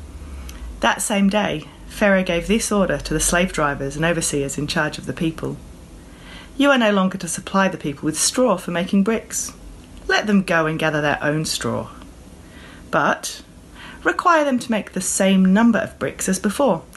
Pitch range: 150-200 Hz